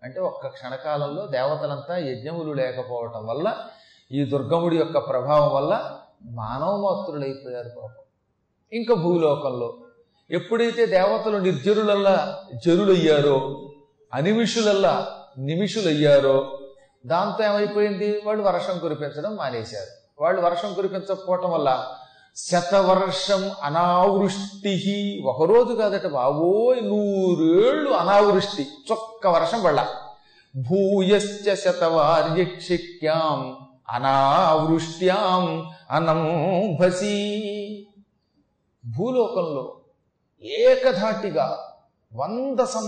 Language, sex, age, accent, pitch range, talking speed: Telugu, male, 30-49, native, 145-205 Hz, 60 wpm